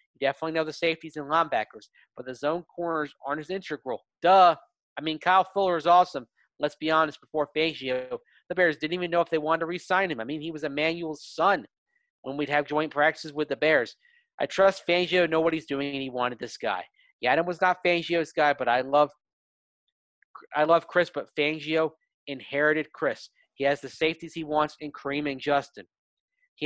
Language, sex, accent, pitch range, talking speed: English, male, American, 150-180 Hz, 200 wpm